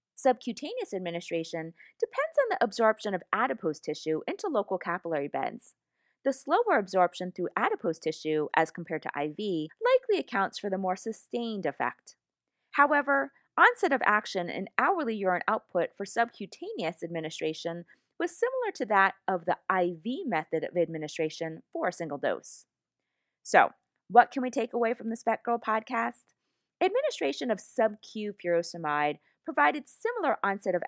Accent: American